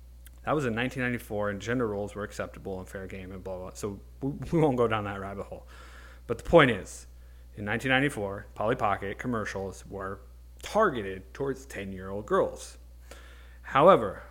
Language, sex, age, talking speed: English, male, 30-49, 170 wpm